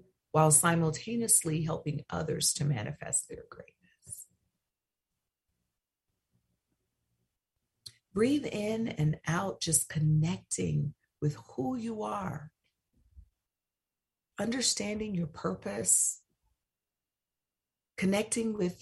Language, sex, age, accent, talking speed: English, female, 50-69, American, 75 wpm